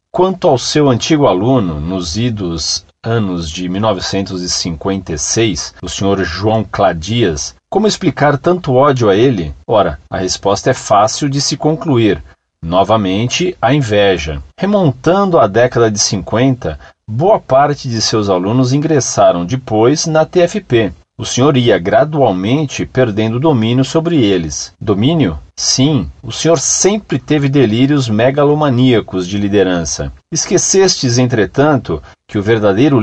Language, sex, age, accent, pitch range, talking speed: Portuguese, male, 40-59, Brazilian, 95-150 Hz, 125 wpm